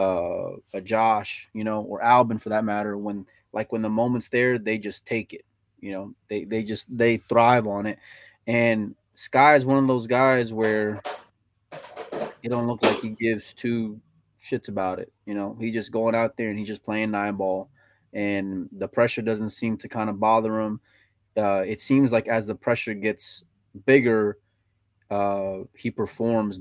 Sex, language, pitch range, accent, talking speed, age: male, English, 105-125 Hz, American, 185 wpm, 20-39